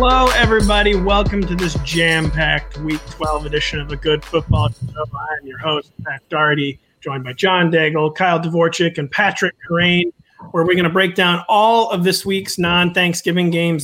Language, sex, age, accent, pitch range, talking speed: English, male, 30-49, American, 155-190 Hz, 175 wpm